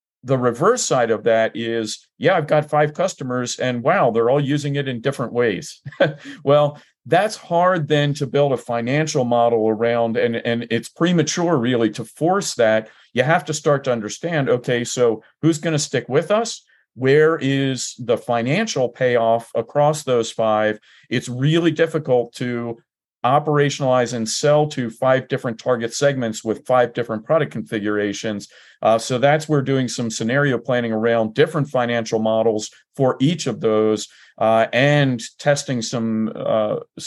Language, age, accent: English, 50-69, American